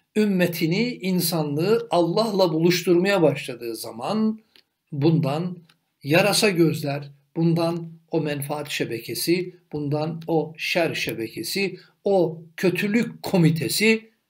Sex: male